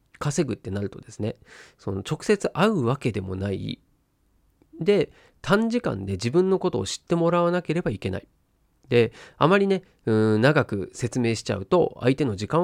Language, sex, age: Japanese, male, 40-59